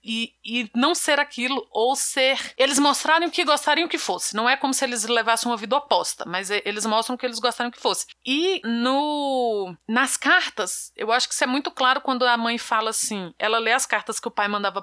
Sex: female